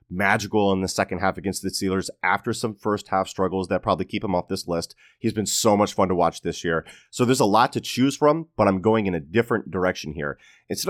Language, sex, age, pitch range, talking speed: English, male, 30-49, 95-120 Hz, 250 wpm